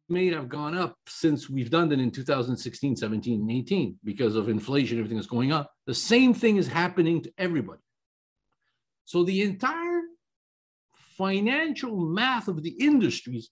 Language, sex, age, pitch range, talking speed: English, male, 50-69, 160-230 Hz, 155 wpm